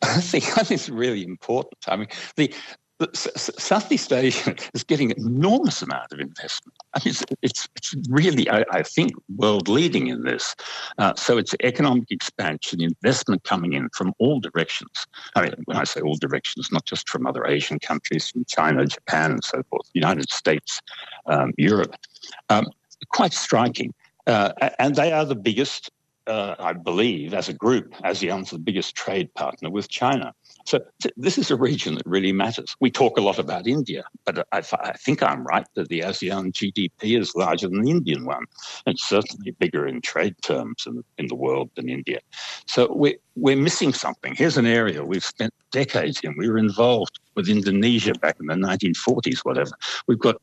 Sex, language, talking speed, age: male, English, 185 wpm, 60-79